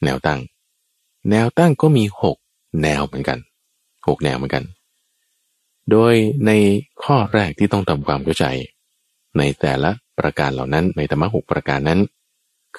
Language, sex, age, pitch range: Thai, male, 20-39, 80-115 Hz